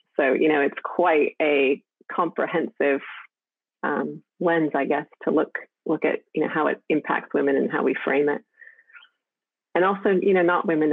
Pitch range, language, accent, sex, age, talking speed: 140-165 Hz, English, American, female, 30-49, 175 wpm